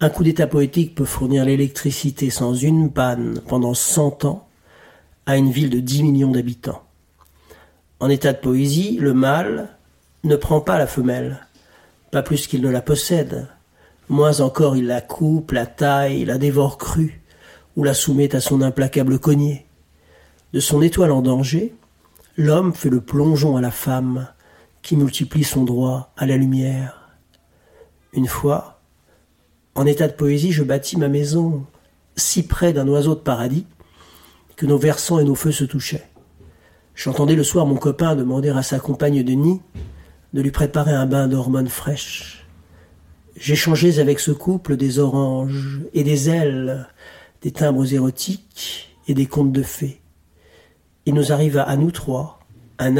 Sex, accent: male, French